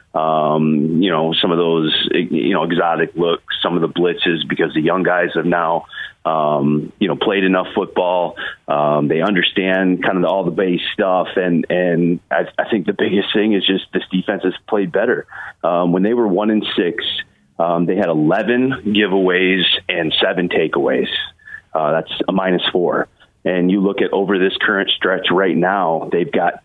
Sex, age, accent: male, 30-49, American